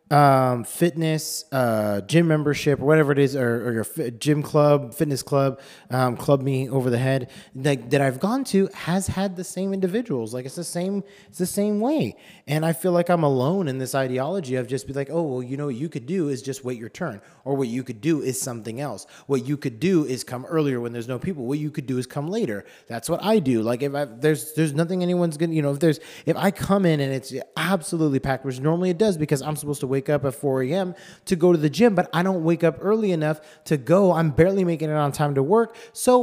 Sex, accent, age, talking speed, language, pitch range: male, American, 30-49, 255 wpm, English, 135-190 Hz